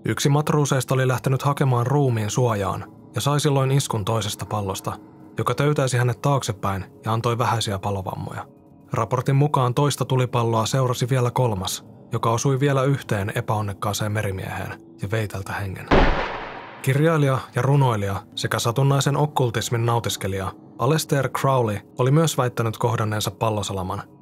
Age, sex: 20-39, male